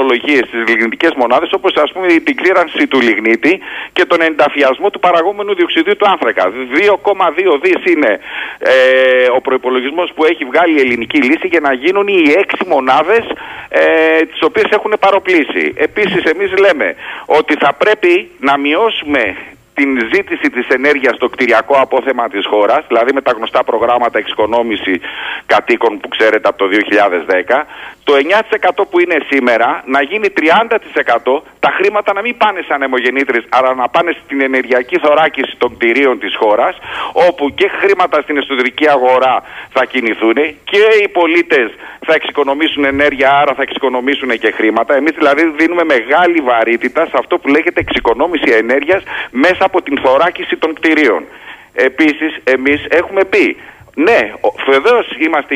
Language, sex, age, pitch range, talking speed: Greek, male, 40-59, 130-205 Hz, 145 wpm